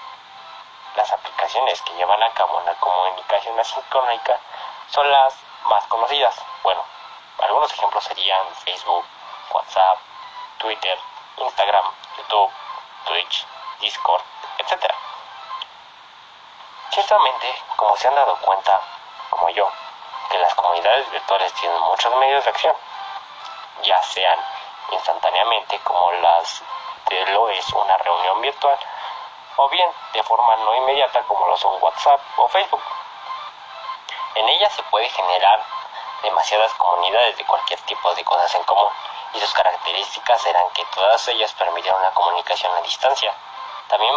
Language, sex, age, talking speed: Spanish, male, 30-49, 125 wpm